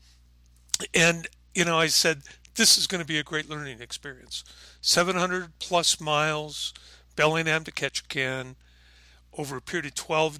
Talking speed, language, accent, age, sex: 145 wpm, English, American, 50-69, male